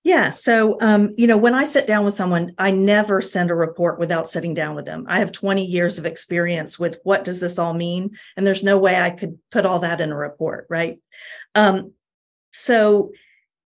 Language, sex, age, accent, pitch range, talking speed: English, female, 40-59, American, 180-220 Hz, 210 wpm